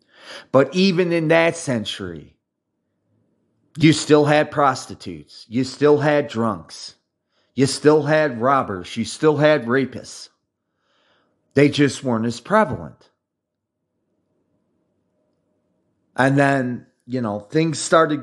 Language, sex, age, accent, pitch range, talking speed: English, male, 30-49, American, 115-155 Hz, 105 wpm